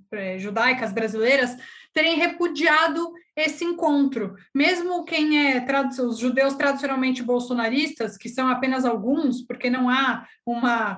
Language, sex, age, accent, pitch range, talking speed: Portuguese, female, 20-39, Brazilian, 250-295 Hz, 120 wpm